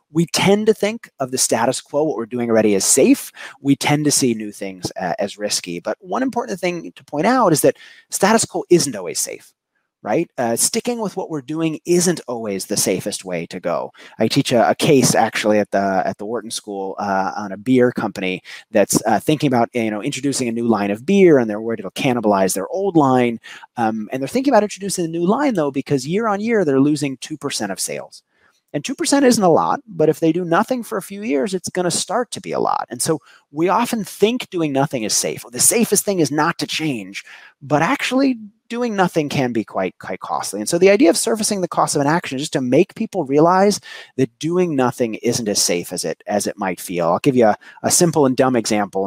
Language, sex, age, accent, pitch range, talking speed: English, male, 30-49, American, 110-180 Hz, 235 wpm